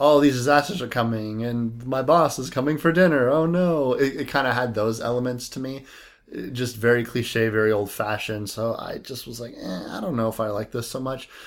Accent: American